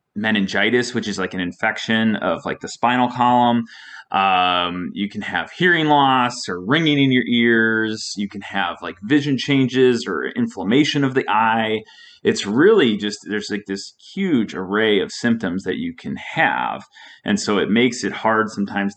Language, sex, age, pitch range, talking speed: English, male, 30-49, 100-130 Hz, 170 wpm